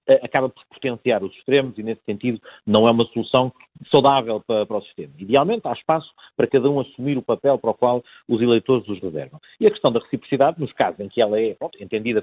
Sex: male